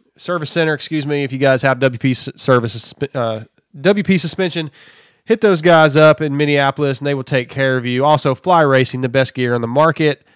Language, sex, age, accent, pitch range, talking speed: English, male, 20-39, American, 135-165 Hz, 205 wpm